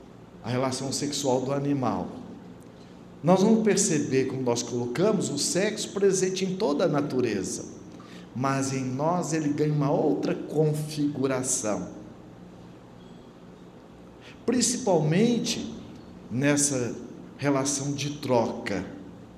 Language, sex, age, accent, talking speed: Portuguese, male, 60-79, Brazilian, 95 wpm